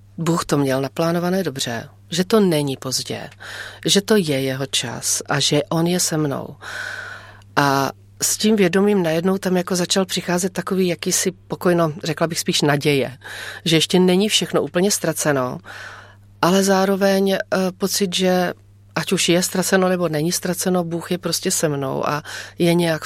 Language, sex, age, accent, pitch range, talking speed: Czech, female, 40-59, native, 140-180 Hz, 160 wpm